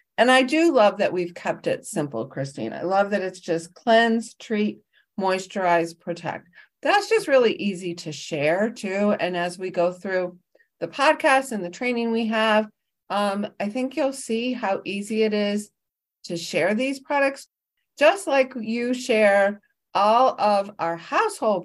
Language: English